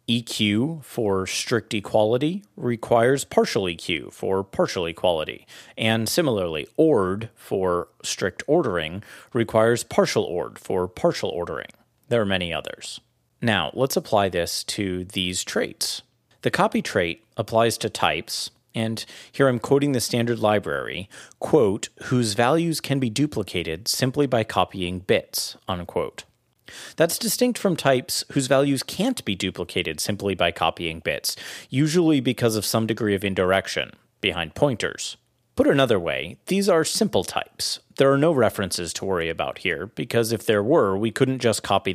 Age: 30-49